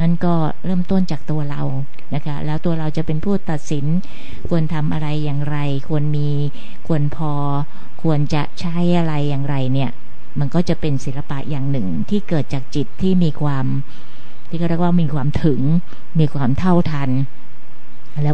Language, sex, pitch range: Thai, female, 145-170 Hz